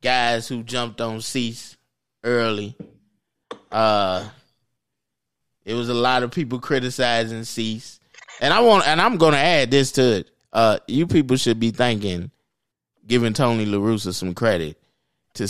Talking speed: 145 wpm